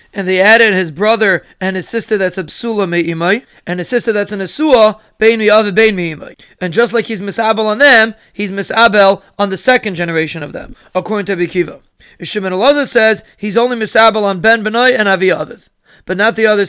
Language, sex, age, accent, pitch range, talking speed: English, male, 30-49, American, 190-230 Hz, 190 wpm